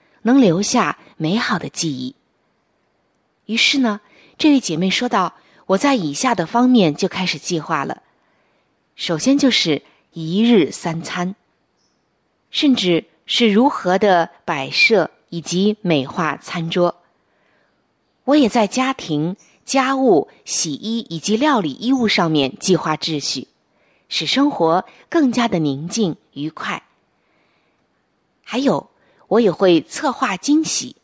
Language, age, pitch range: Chinese, 20-39, 170-255 Hz